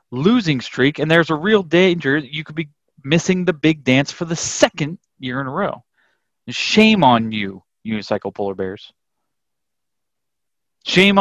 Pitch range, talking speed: 120-180 Hz, 150 wpm